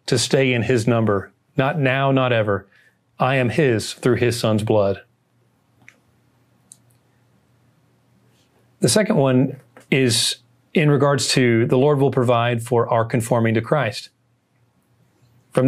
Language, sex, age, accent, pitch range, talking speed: English, male, 40-59, American, 120-140 Hz, 125 wpm